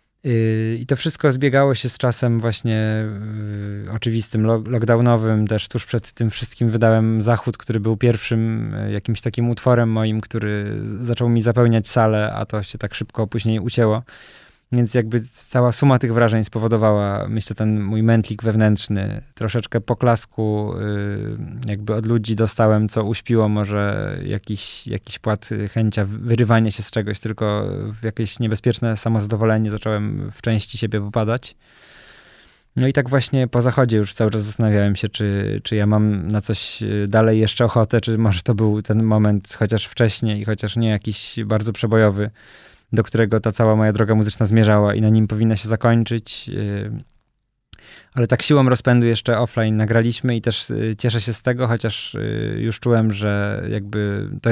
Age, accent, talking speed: 20-39, native, 155 wpm